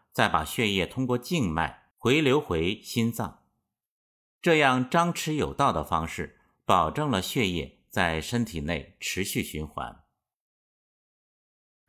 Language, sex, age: Chinese, male, 50-69